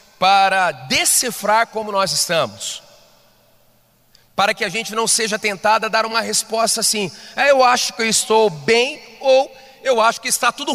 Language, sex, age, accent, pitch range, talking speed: Portuguese, male, 40-59, Brazilian, 195-260 Hz, 155 wpm